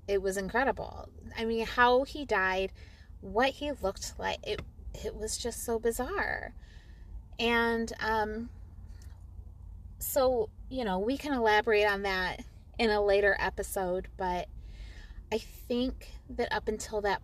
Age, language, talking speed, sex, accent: 20-39, English, 135 wpm, female, American